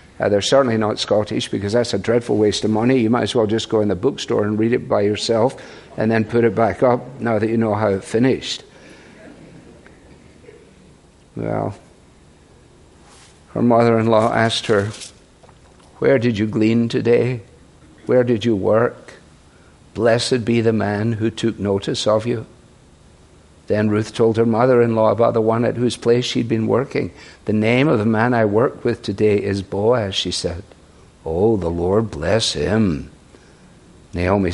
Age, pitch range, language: 50-69, 100-115 Hz, English